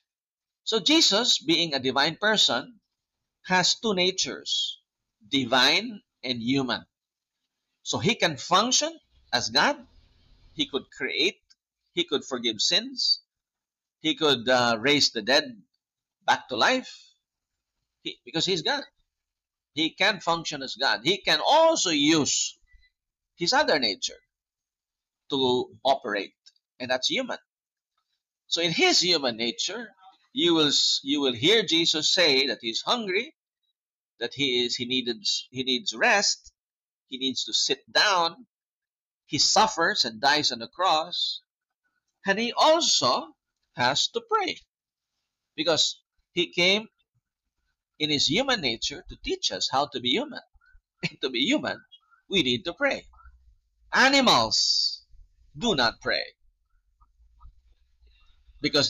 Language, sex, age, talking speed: English, male, 50-69, 125 wpm